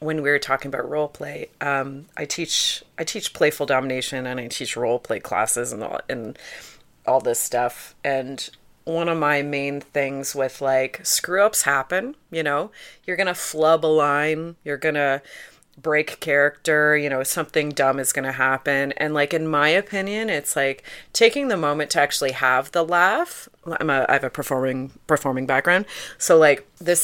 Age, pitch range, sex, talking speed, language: 30-49, 135-160 Hz, female, 185 wpm, English